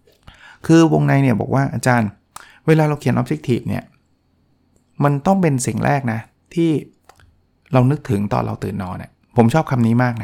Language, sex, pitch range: Thai, male, 120-155 Hz